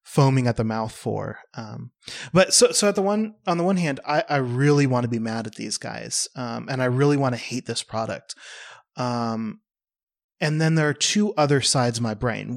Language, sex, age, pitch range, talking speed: English, male, 30-49, 115-150 Hz, 220 wpm